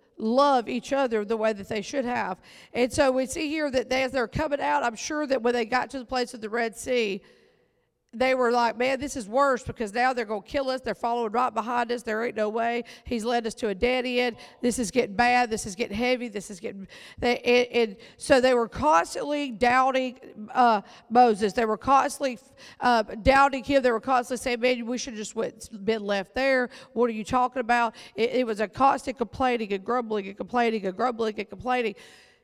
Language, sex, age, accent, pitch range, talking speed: English, female, 50-69, American, 220-260 Hz, 225 wpm